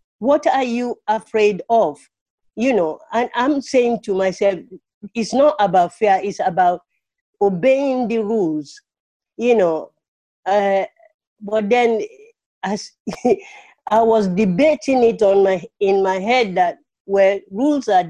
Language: English